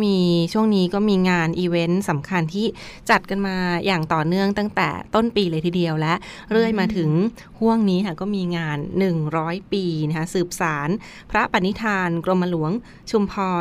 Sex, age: female, 20-39